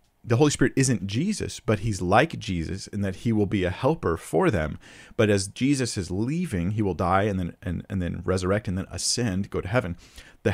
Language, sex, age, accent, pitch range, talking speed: English, male, 40-59, American, 90-120 Hz, 220 wpm